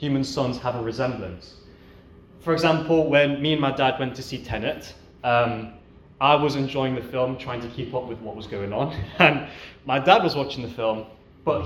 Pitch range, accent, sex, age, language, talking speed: 120-190 Hz, British, male, 20-39, English, 200 wpm